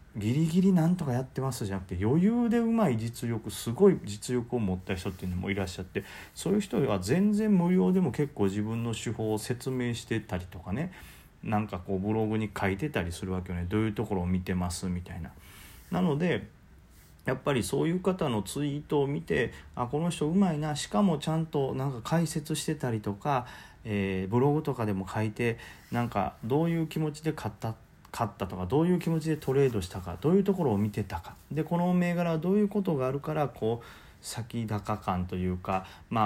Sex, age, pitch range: male, 40-59, 100-165 Hz